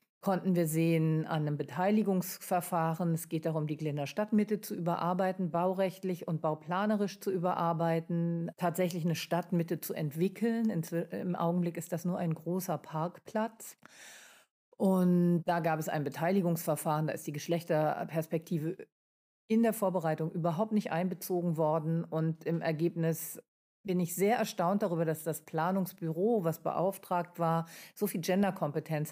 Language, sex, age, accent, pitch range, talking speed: German, female, 40-59, German, 160-190 Hz, 135 wpm